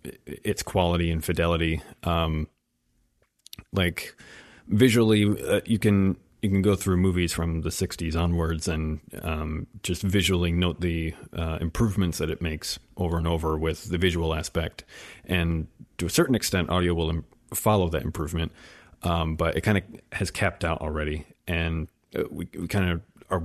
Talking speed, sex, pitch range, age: 160 wpm, male, 80-95 Hz, 30-49